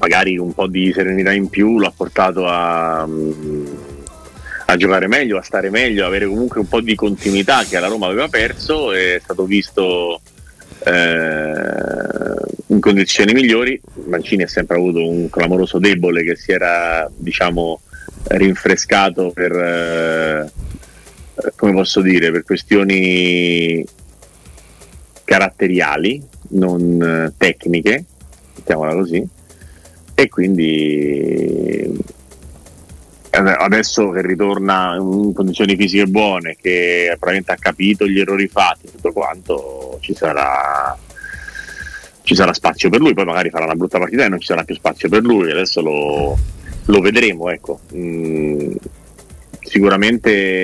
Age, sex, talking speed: 30-49, male, 125 wpm